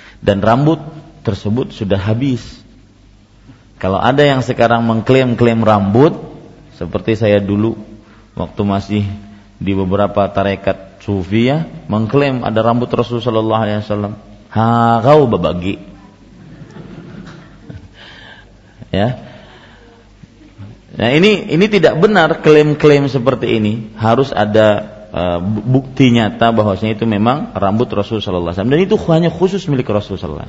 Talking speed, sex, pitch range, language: 110 wpm, male, 105-135 Hz, Malay